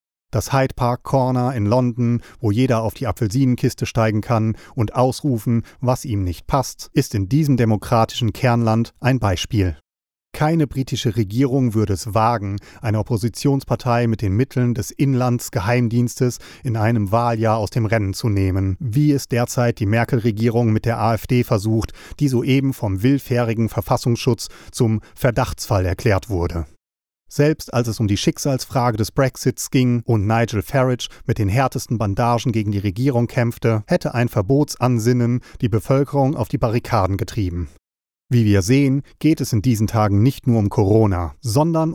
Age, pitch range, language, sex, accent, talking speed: 40-59, 105-130 Hz, German, male, German, 155 wpm